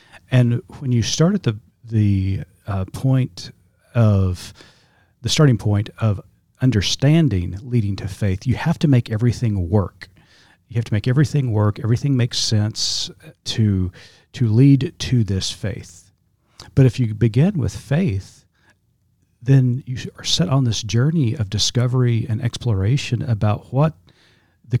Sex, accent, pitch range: male, American, 100-130 Hz